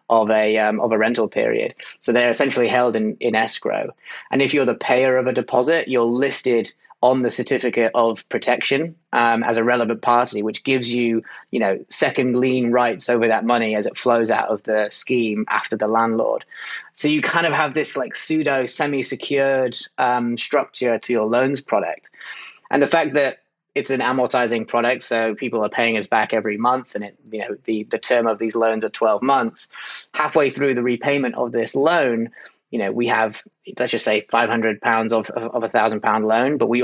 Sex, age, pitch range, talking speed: male, 20-39, 115-135 Hz, 200 wpm